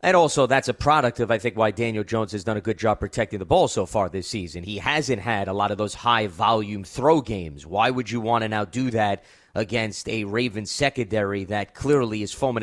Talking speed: 235 wpm